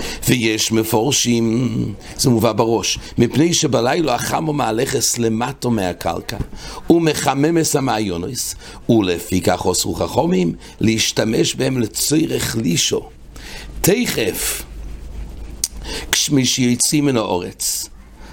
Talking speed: 85 wpm